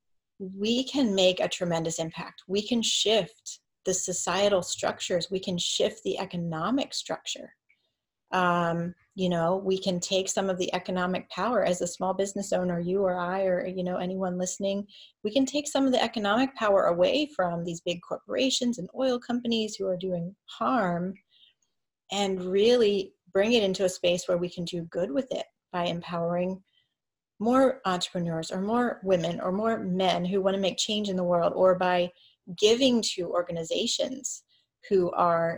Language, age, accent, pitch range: English, 30-49, American, 175-205 Hz